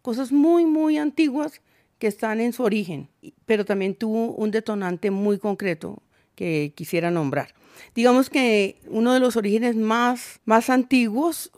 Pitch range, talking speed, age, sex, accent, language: 185-235 Hz, 145 wpm, 40-59, female, Colombian, Spanish